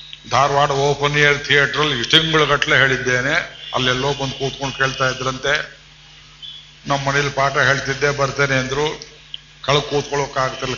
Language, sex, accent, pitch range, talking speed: Kannada, male, native, 130-145 Hz, 110 wpm